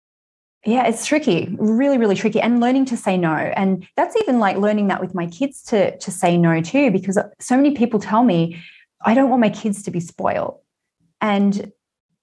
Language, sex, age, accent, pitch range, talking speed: English, female, 20-39, Australian, 185-240 Hz, 195 wpm